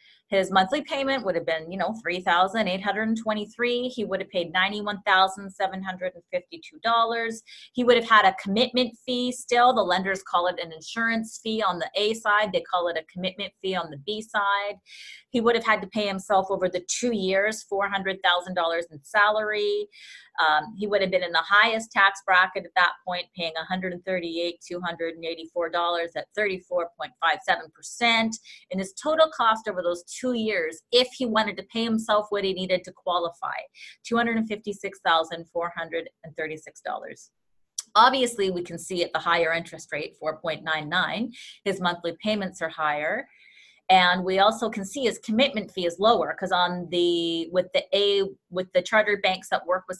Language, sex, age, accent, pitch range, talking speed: English, female, 30-49, American, 170-220 Hz, 195 wpm